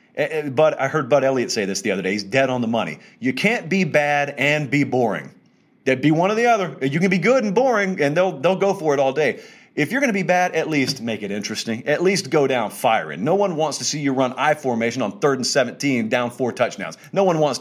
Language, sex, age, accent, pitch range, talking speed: English, male, 40-59, American, 120-155 Hz, 260 wpm